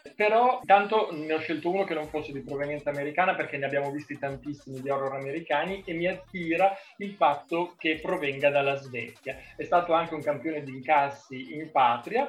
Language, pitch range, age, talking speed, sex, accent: Italian, 135-180 Hz, 30-49, 185 wpm, male, native